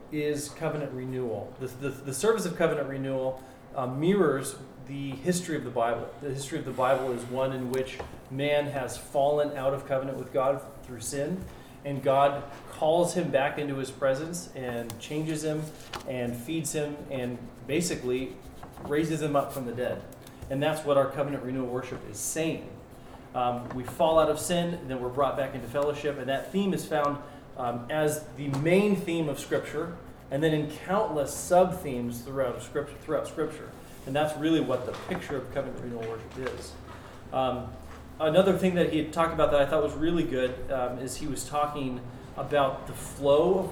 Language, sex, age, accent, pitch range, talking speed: English, male, 30-49, American, 130-155 Hz, 185 wpm